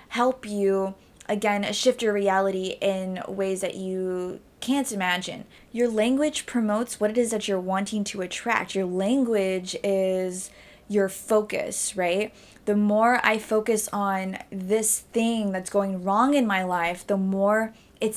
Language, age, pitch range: English, 20-39, 190-225 Hz